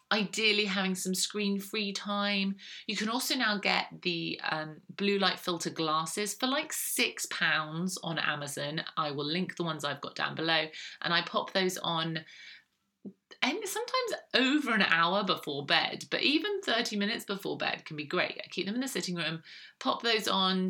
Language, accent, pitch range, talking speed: English, British, 165-215 Hz, 175 wpm